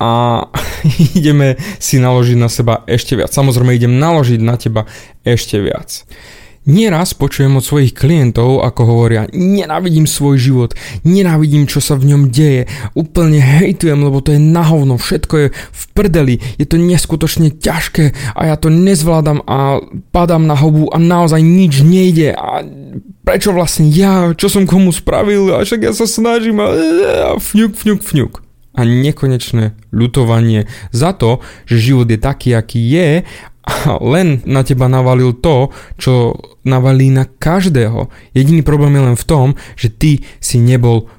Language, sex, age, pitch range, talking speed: Slovak, male, 20-39, 120-165 Hz, 155 wpm